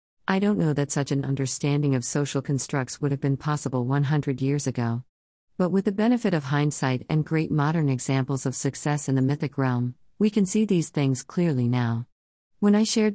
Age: 50-69